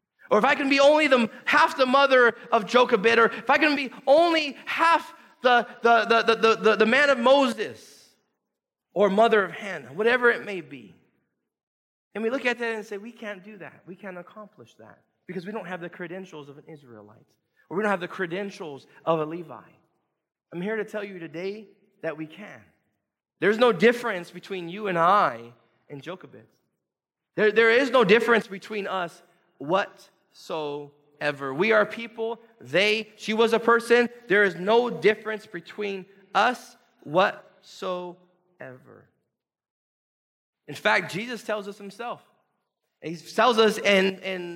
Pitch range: 185-240 Hz